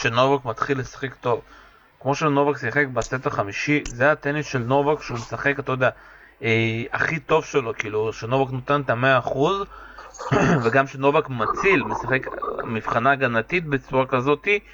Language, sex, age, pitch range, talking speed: Hebrew, male, 30-49, 130-150 Hz, 145 wpm